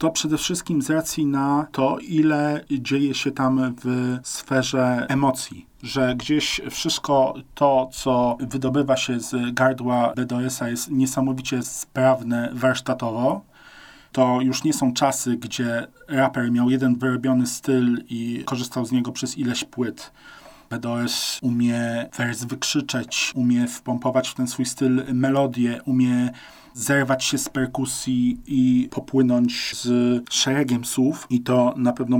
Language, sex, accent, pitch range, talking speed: Polish, male, native, 120-135 Hz, 130 wpm